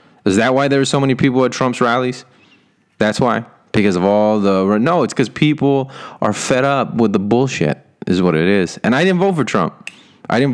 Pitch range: 95-135 Hz